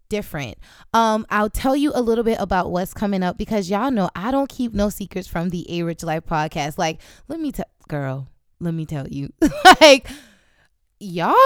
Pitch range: 195-275 Hz